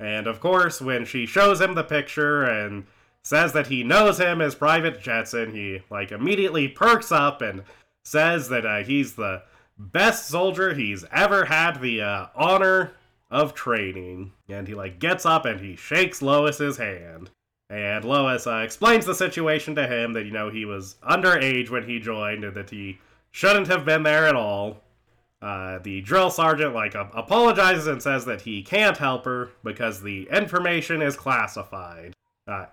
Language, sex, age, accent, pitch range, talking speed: English, male, 30-49, American, 110-175 Hz, 175 wpm